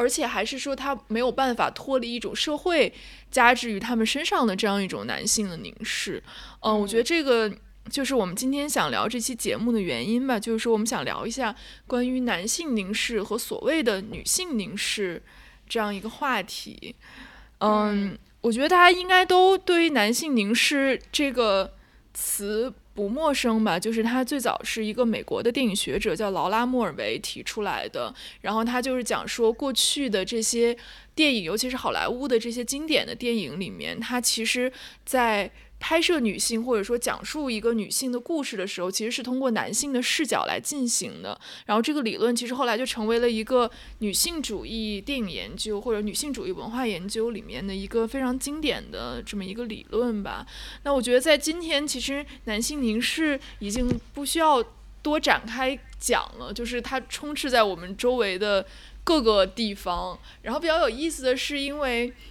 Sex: female